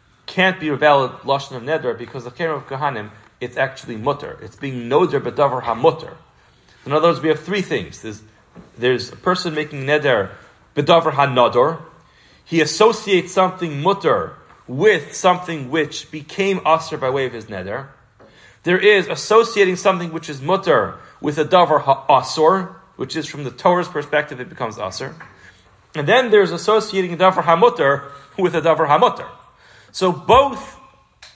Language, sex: English, male